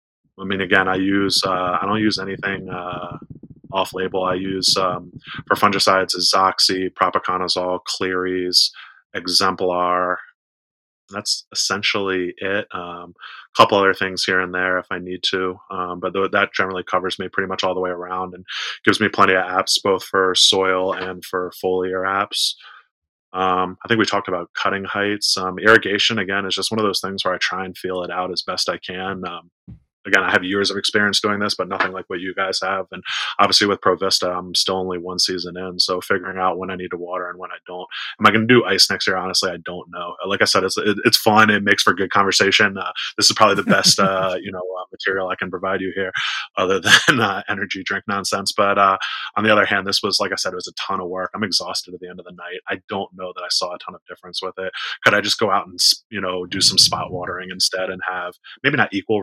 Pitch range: 90-95 Hz